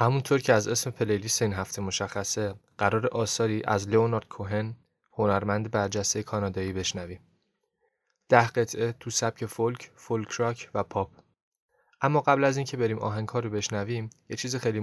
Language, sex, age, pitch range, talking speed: Persian, male, 20-39, 105-115 Hz, 140 wpm